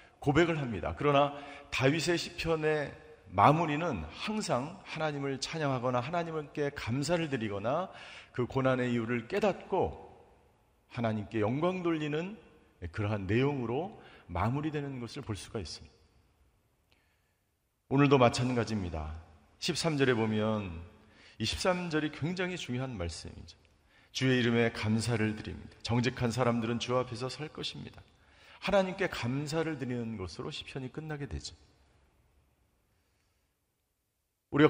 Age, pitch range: 40-59, 110-155 Hz